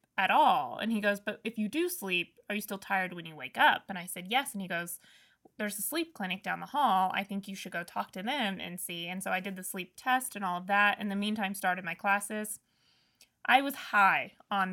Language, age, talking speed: English, 20-39, 255 wpm